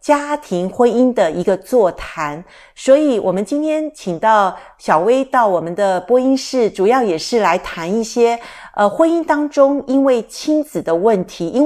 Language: Chinese